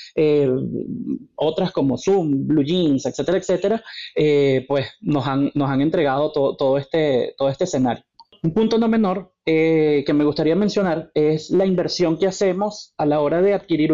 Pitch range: 155-190 Hz